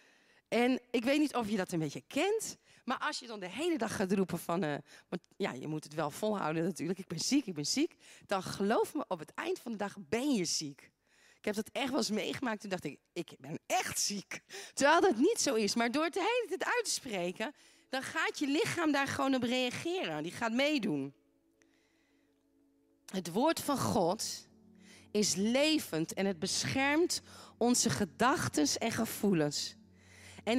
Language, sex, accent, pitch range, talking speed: Dutch, female, Dutch, 180-290 Hz, 195 wpm